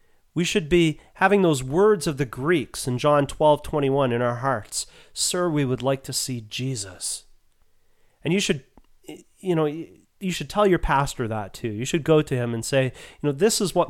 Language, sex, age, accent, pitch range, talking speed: English, male, 30-49, American, 125-180 Hz, 205 wpm